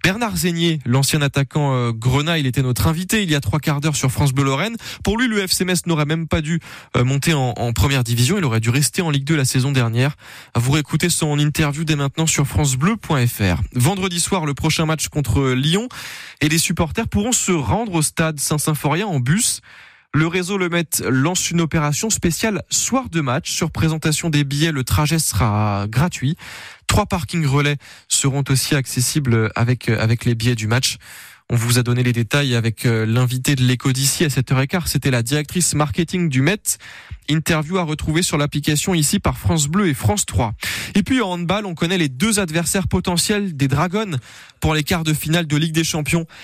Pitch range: 130-170 Hz